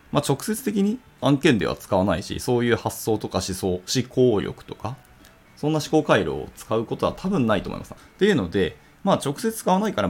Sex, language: male, Japanese